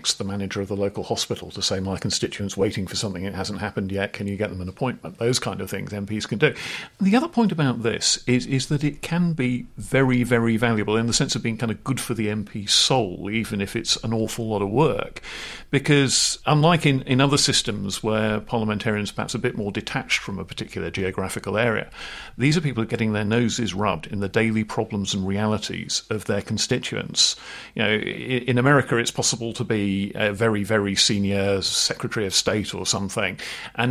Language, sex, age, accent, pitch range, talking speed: English, male, 50-69, British, 100-125 Hz, 205 wpm